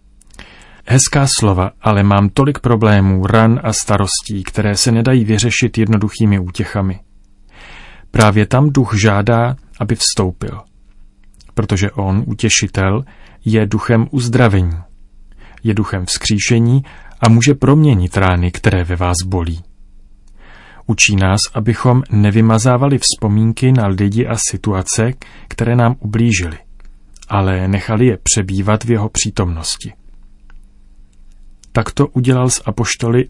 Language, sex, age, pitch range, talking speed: Czech, male, 30-49, 100-120 Hz, 110 wpm